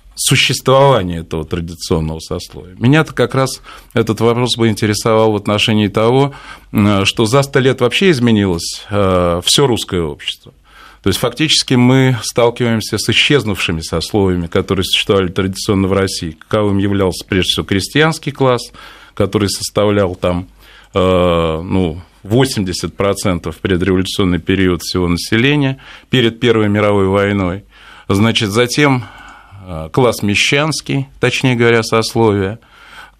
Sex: male